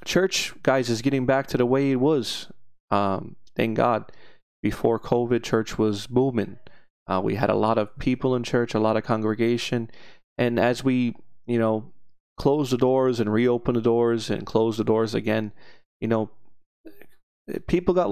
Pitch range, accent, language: 110-120 Hz, American, English